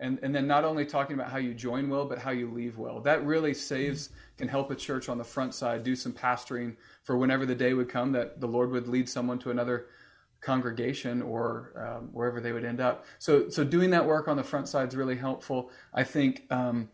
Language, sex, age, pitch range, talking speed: English, male, 30-49, 125-165 Hz, 235 wpm